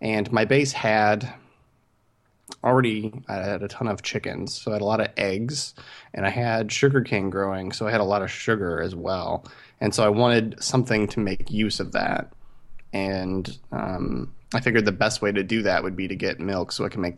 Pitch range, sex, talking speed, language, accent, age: 100-130 Hz, male, 215 wpm, English, American, 20-39